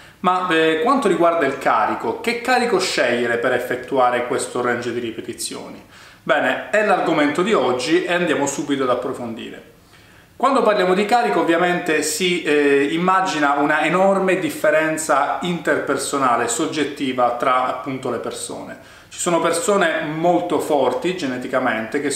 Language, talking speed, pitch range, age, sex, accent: Italian, 135 wpm, 125-160 Hz, 30-49, male, native